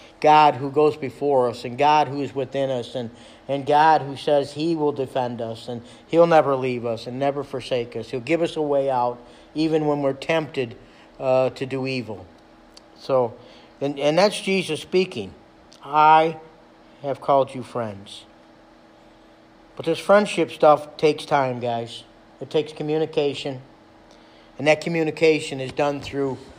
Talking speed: 160 wpm